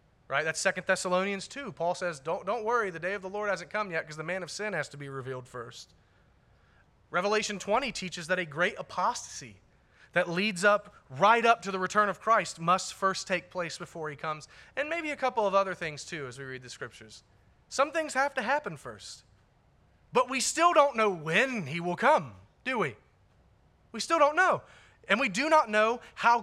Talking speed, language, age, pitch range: 210 wpm, English, 30-49, 135-215 Hz